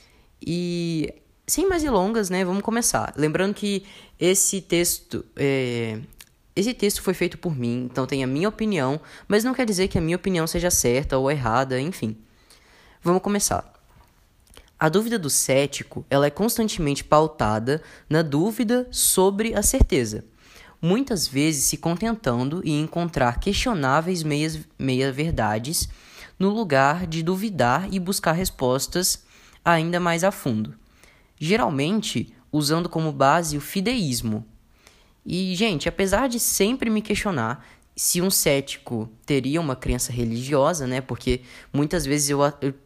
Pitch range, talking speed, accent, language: 135-190 Hz, 130 wpm, Brazilian, Portuguese